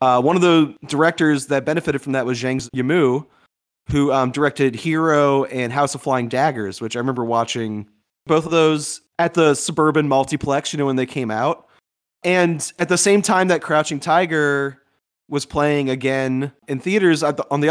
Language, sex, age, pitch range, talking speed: English, male, 20-39, 130-160 Hz, 185 wpm